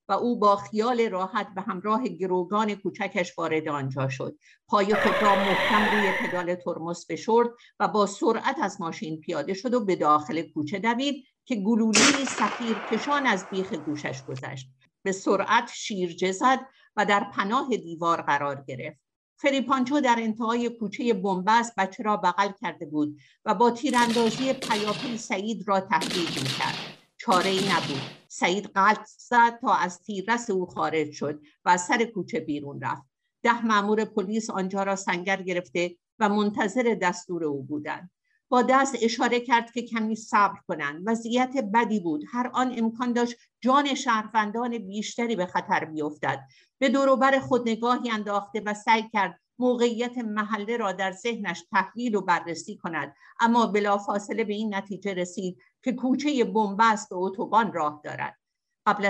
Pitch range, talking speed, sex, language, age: 185-235 Hz, 150 wpm, female, Persian, 50-69